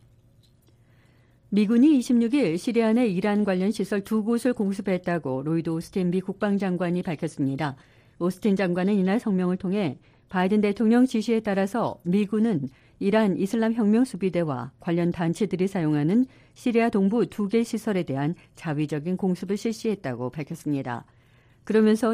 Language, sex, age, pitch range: Korean, female, 50-69, 150-210 Hz